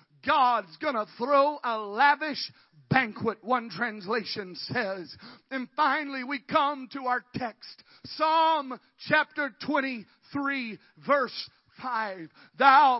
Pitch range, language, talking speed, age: 230-290 Hz, English, 105 wpm, 40-59